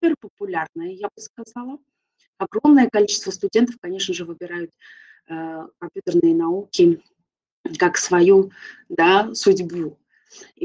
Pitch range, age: 210-350 Hz, 20-39